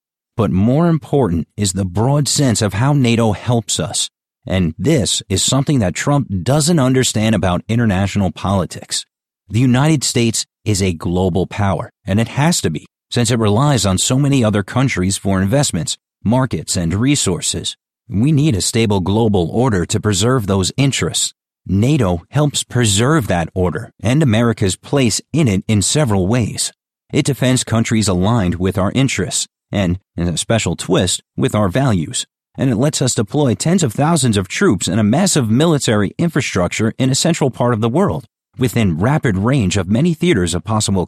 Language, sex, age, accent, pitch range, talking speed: English, male, 40-59, American, 95-135 Hz, 170 wpm